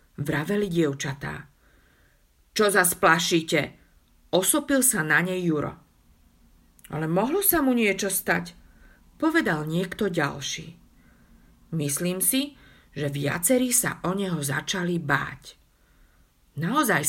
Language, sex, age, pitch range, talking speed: Slovak, female, 50-69, 140-185 Hz, 100 wpm